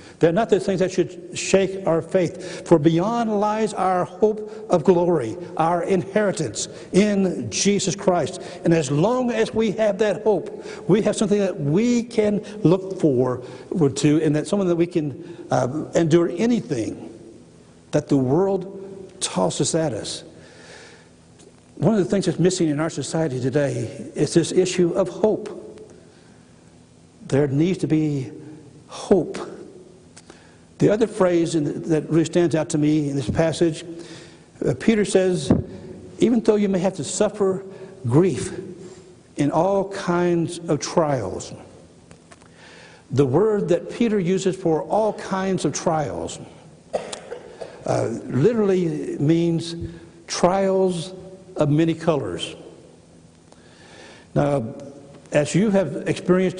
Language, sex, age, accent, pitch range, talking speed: English, male, 60-79, American, 150-190 Hz, 130 wpm